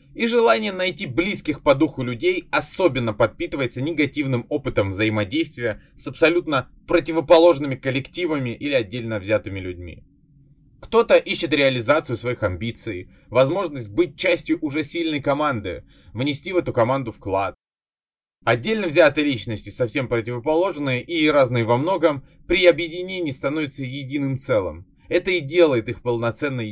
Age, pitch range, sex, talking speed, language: 20-39, 115-165 Hz, male, 125 wpm, Russian